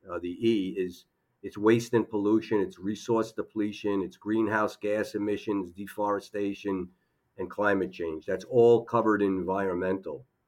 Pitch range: 100-115 Hz